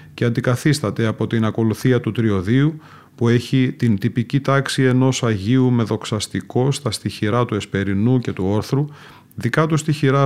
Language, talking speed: Greek, 150 wpm